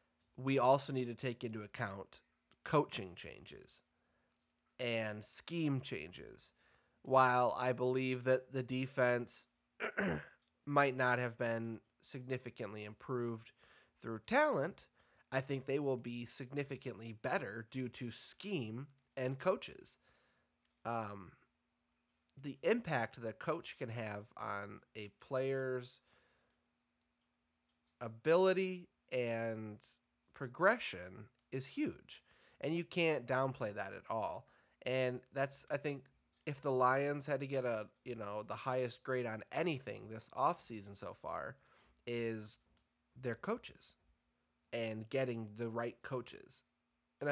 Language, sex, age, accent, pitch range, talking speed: English, male, 30-49, American, 105-135 Hz, 115 wpm